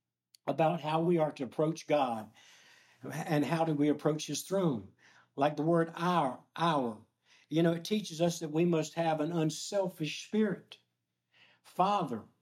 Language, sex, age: English, male, 60-79